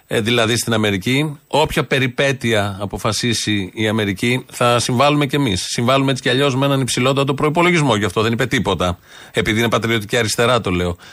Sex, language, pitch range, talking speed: male, Greek, 120-160 Hz, 165 wpm